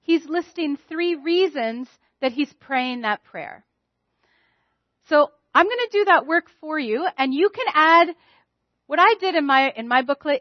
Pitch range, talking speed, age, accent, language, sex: 225-320 Hz, 175 wpm, 40-59, American, English, female